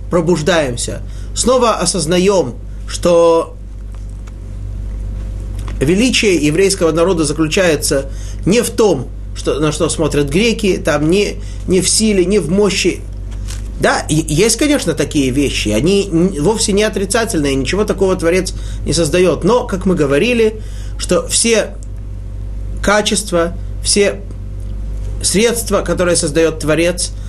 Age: 30-49